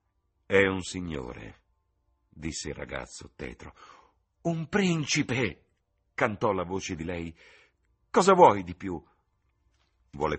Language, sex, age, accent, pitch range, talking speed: Italian, male, 60-79, native, 85-130 Hz, 110 wpm